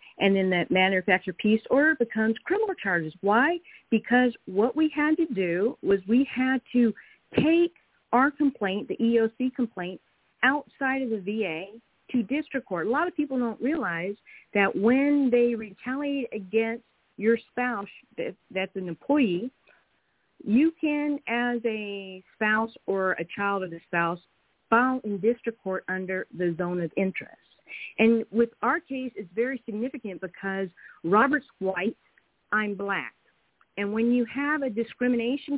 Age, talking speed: 40-59, 145 wpm